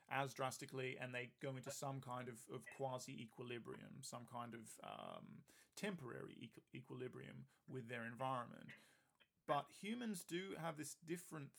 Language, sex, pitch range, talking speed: English, male, 125-145 Hz, 140 wpm